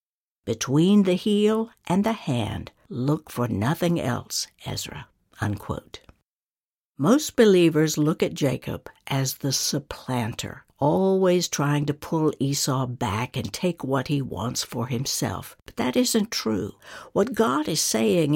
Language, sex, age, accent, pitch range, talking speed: English, female, 60-79, American, 130-195 Hz, 130 wpm